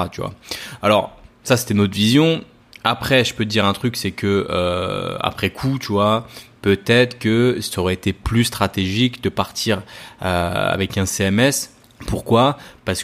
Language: French